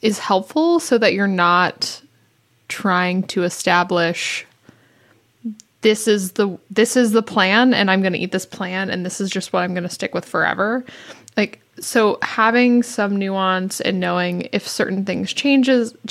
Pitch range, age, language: 180-225 Hz, 20-39, English